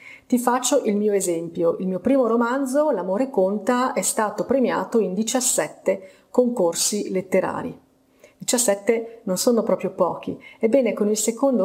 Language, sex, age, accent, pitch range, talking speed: Italian, female, 30-49, native, 185-240 Hz, 140 wpm